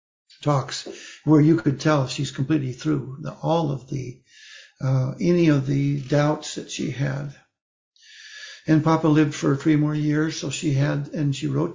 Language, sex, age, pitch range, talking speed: English, male, 60-79, 140-170 Hz, 170 wpm